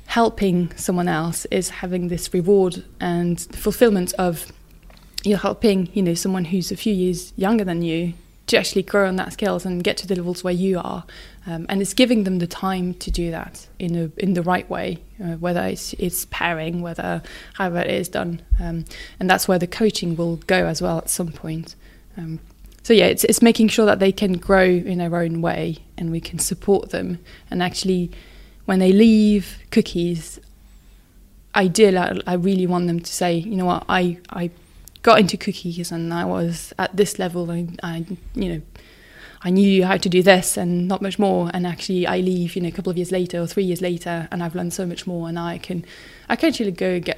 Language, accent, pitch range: English, British, 170-195 Hz